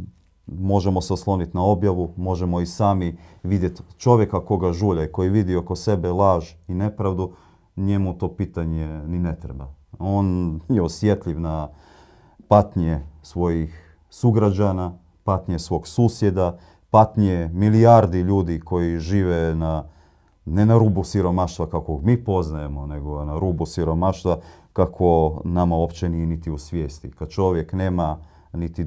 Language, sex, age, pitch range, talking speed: Croatian, male, 40-59, 80-95 Hz, 130 wpm